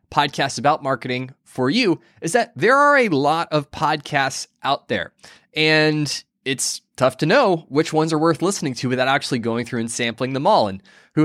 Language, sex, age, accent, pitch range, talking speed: English, male, 20-39, American, 125-160 Hz, 190 wpm